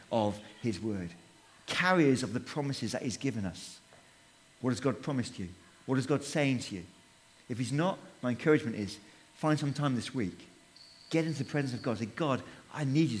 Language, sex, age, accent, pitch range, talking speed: English, male, 40-59, British, 115-160 Hz, 200 wpm